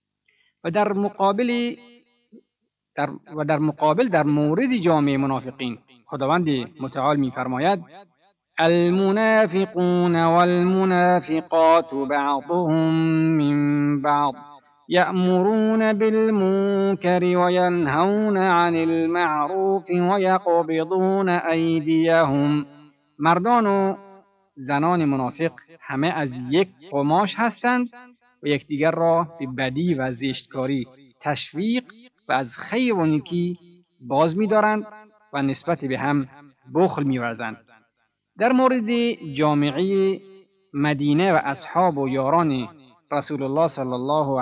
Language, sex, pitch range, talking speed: Persian, male, 145-190 Hz, 90 wpm